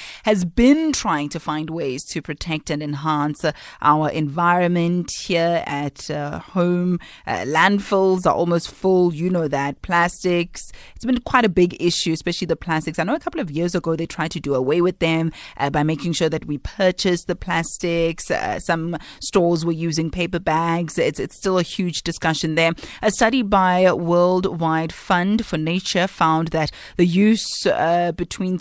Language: English